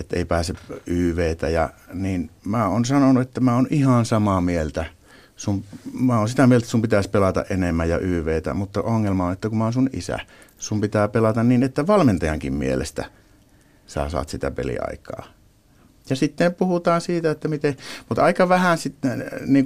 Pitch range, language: 85-115 Hz, Finnish